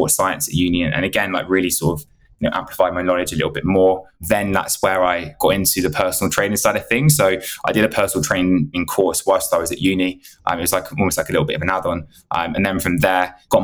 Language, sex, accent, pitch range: English, male, British, 90-110 Hz